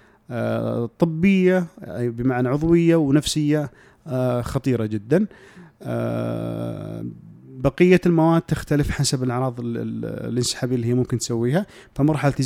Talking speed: 80 wpm